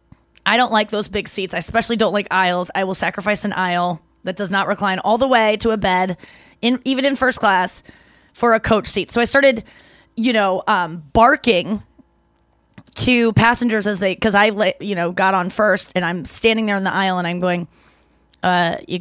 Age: 20-39